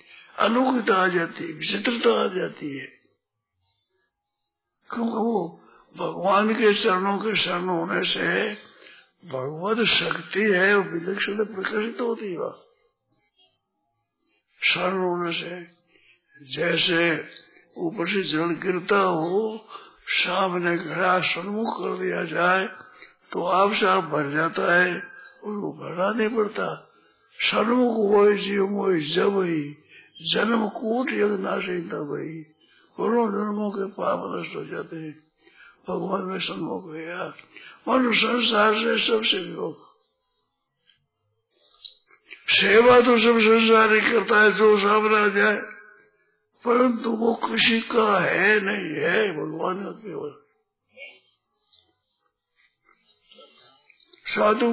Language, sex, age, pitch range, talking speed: Hindi, male, 60-79, 180-225 Hz, 95 wpm